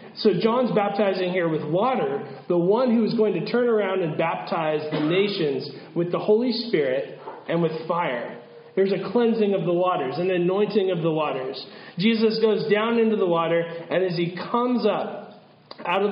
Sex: male